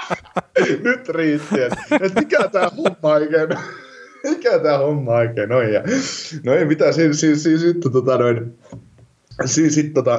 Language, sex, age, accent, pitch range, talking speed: Finnish, male, 20-39, native, 115-165 Hz, 80 wpm